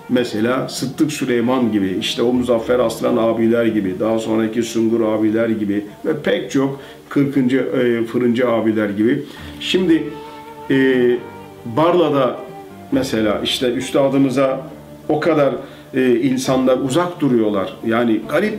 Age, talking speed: 40-59, 120 wpm